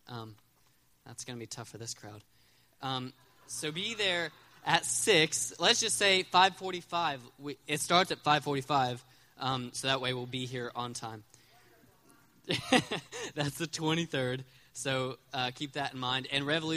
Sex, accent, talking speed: male, American, 160 wpm